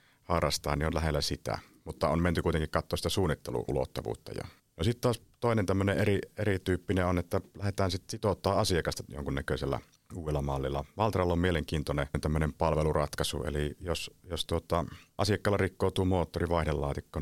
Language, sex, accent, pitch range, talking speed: Finnish, male, native, 75-95 Hz, 130 wpm